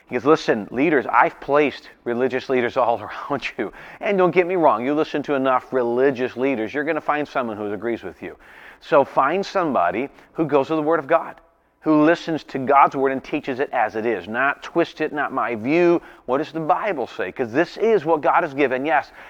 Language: English